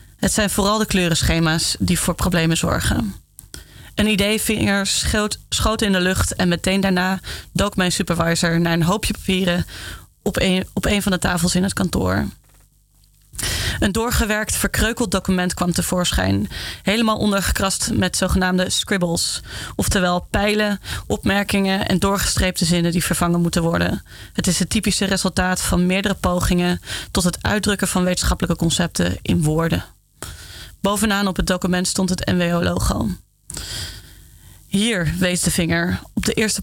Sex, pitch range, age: female, 170-200 Hz, 30-49